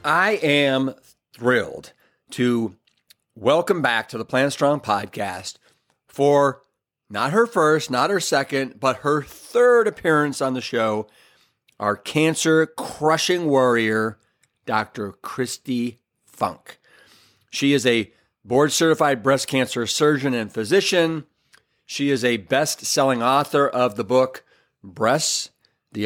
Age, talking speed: 40-59, 120 wpm